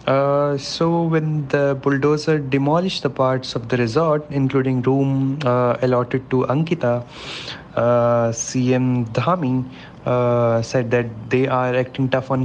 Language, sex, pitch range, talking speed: English, male, 130-150 Hz, 130 wpm